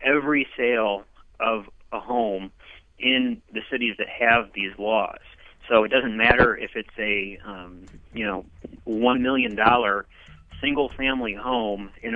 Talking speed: 140 wpm